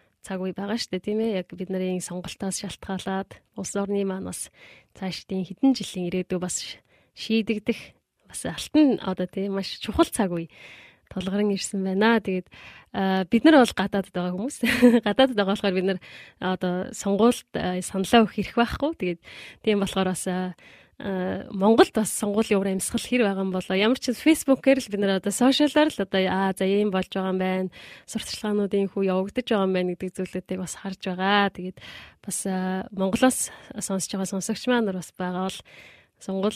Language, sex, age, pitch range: Korean, female, 20-39, 185-215 Hz